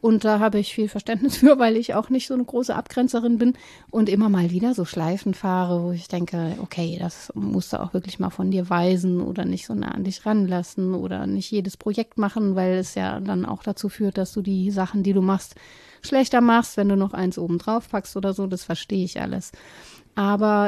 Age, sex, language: 30-49, female, German